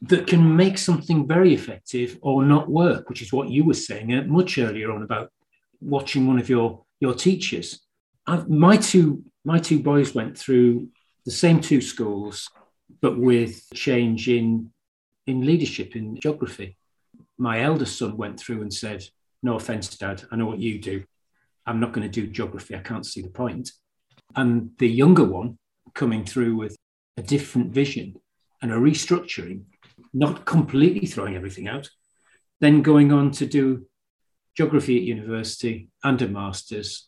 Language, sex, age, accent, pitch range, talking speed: English, male, 40-59, British, 115-150 Hz, 160 wpm